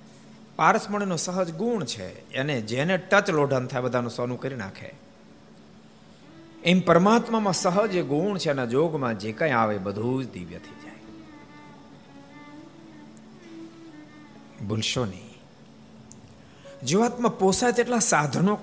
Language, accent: Gujarati, native